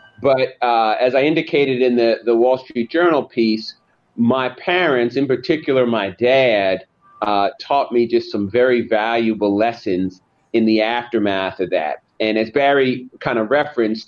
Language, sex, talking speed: English, male, 160 wpm